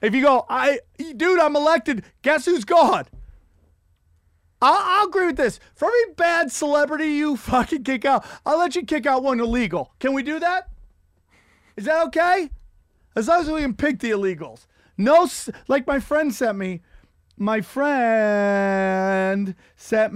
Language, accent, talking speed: English, American, 160 wpm